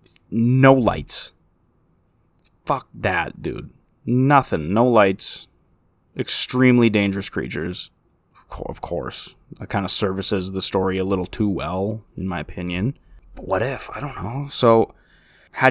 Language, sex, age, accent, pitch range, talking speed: English, male, 20-39, American, 100-130 Hz, 130 wpm